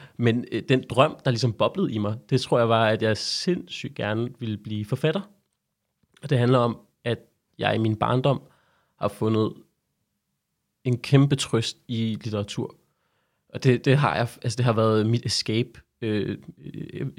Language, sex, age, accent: Danish, male, 30-49, native